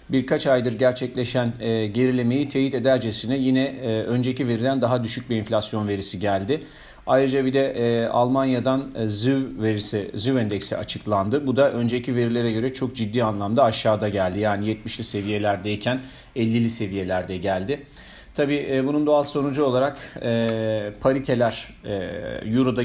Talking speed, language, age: 125 wpm, Turkish, 40-59